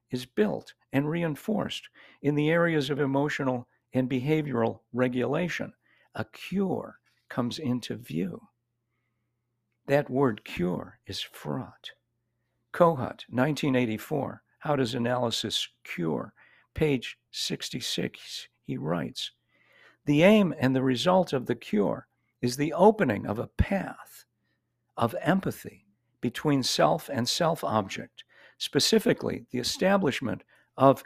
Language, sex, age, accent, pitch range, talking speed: English, male, 50-69, American, 120-155 Hz, 110 wpm